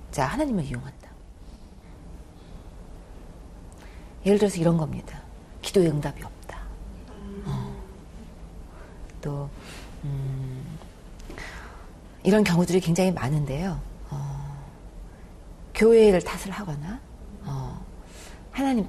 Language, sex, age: Korean, female, 40-59